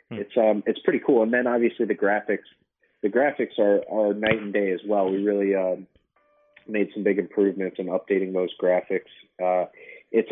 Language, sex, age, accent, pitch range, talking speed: English, male, 30-49, American, 95-110 Hz, 185 wpm